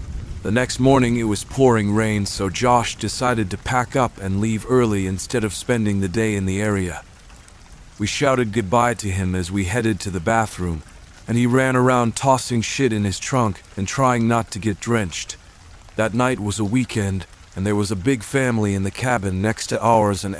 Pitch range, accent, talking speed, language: 95-120 Hz, American, 200 wpm, English